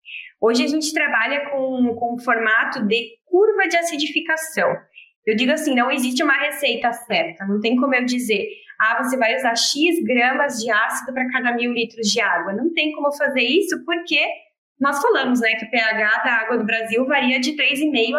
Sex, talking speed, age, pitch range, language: female, 190 wpm, 10-29, 225-295 Hz, Portuguese